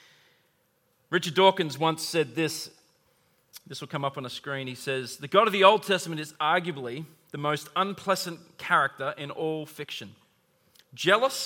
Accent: Australian